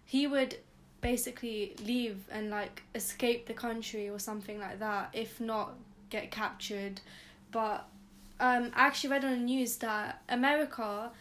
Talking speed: 145 wpm